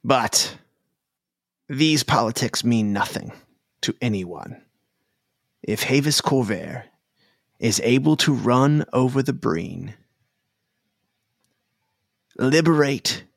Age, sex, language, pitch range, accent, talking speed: 30-49, male, English, 110-135 Hz, American, 80 wpm